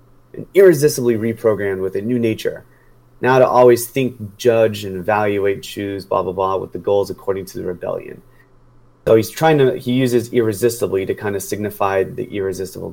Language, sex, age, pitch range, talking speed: English, male, 30-49, 105-130 Hz, 175 wpm